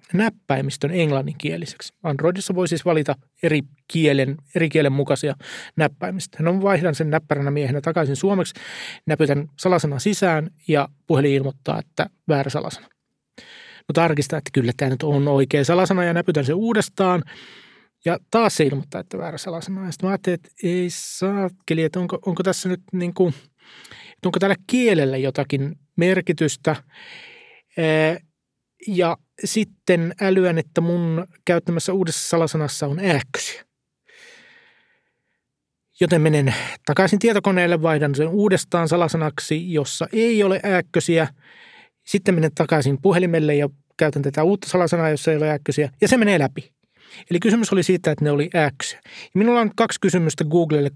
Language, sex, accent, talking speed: Finnish, male, native, 140 wpm